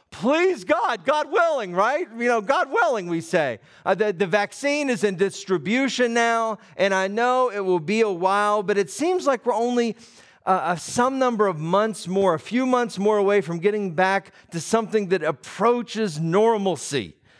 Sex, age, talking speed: male, 50-69, 180 wpm